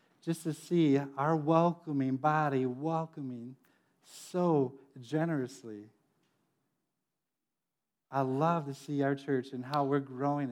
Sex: male